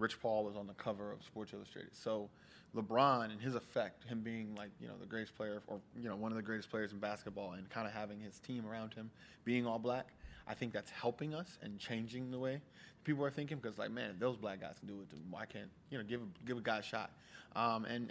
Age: 20-39